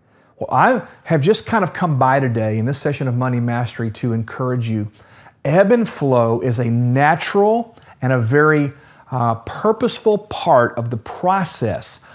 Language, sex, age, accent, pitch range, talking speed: English, male, 40-59, American, 120-155 Hz, 165 wpm